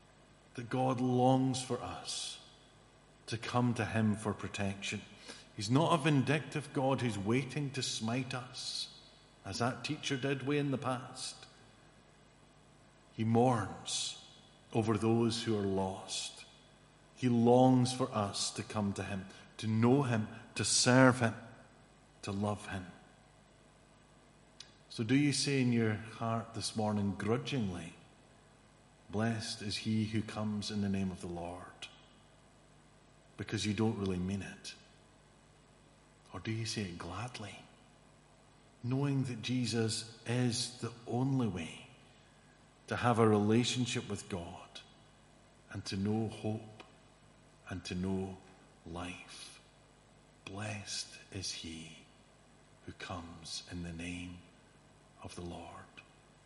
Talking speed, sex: 125 wpm, male